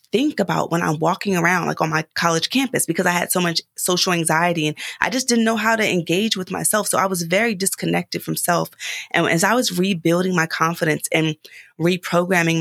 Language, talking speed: English, 210 wpm